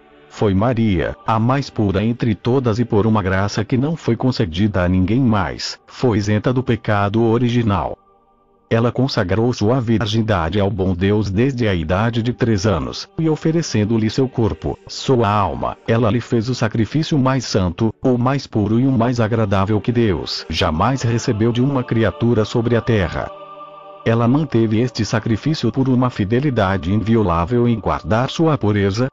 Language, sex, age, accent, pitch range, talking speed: Portuguese, male, 50-69, Brazilian, 100-125 Hz, 160 wpm